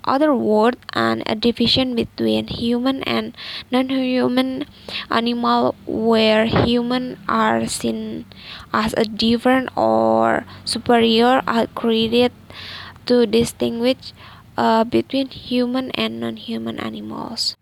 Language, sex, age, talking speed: Indonesian, female, 10-29, 100 wpm